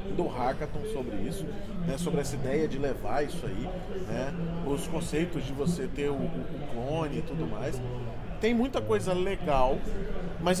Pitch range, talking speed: 150-195 Hz, 165 wpm